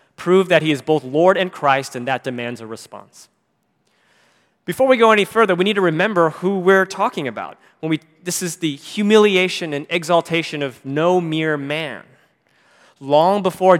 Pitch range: 145-190 Hz